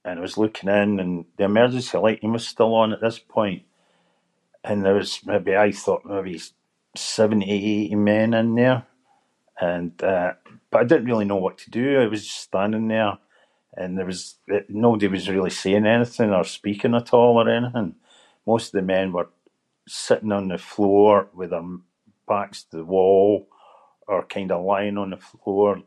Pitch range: 95-110 Hz